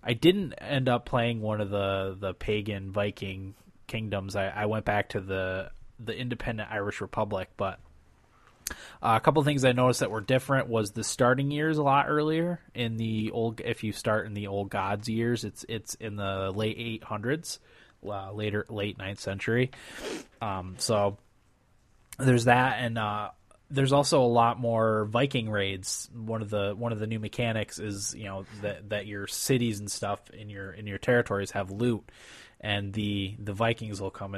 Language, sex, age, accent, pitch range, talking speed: English, male, 20-39, American, 100-120 Hz, 180 wpm